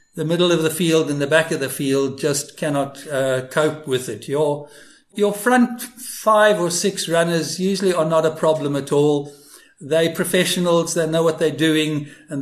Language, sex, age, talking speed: English, male, 60-79, 190 wpm